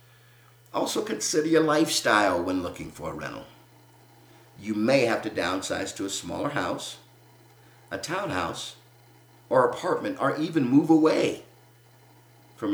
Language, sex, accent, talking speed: English, male, American, 125 wpm